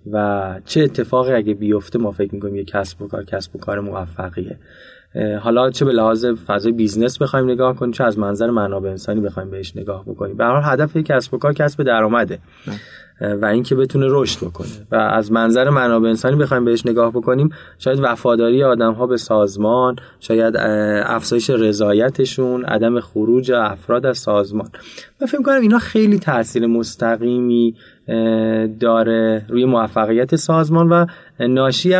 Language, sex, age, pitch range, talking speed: Persian, male, 20-39, 110-135 Hz, 165 wpm